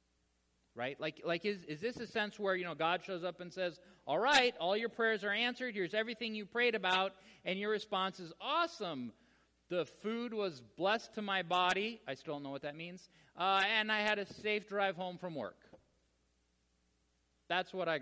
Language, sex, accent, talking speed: English, male, American, 195 wpm